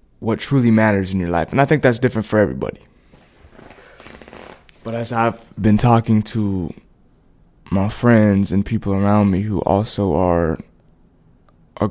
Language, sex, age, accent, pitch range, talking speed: English, male, 20-39, American, 80-110 Hz, 145 wpm